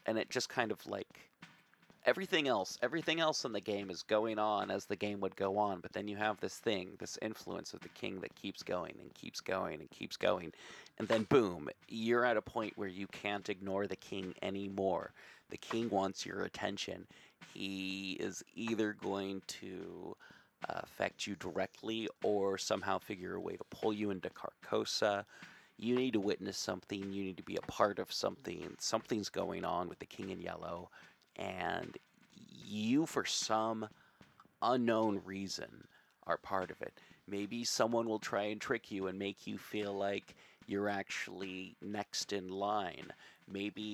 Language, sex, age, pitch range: English, male, 30-49, 95-110 Hz